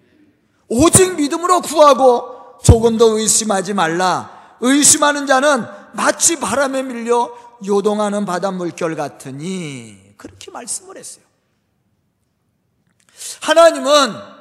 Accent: native